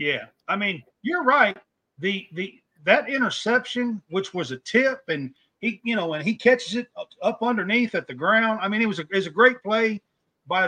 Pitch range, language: 155-210 Hz, English